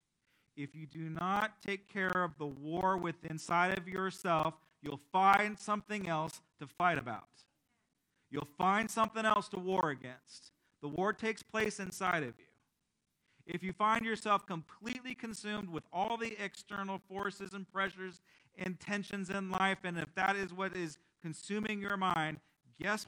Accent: American